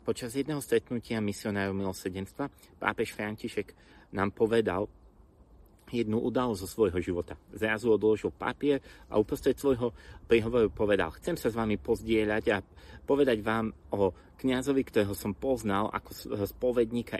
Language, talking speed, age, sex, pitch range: Slovak, 130 wpm, 30-49, male, 90-115 Hz